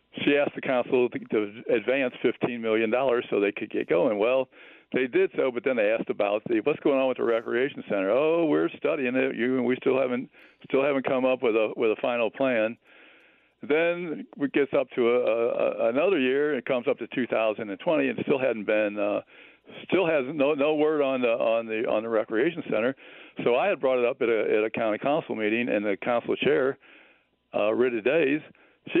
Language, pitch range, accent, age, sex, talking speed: English, 110-135 Hz, American, 60-79, male, 215 wpm